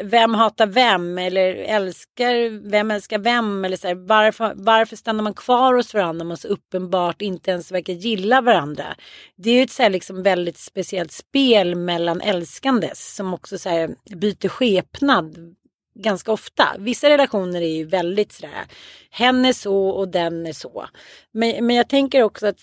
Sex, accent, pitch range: female, native, 190-265 Hz